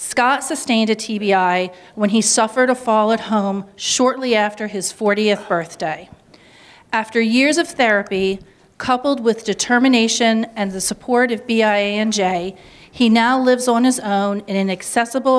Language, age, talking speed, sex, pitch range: English, 40-59, 150 wpm, female, 195-250 Hz